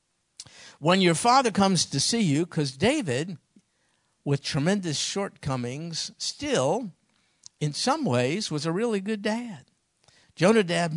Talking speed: 120 wpm